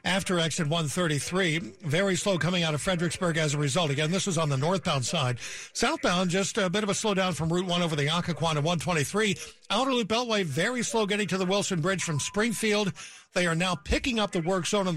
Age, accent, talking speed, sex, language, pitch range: 60-79, American, 220 wpm, male, English, 165-200 Hz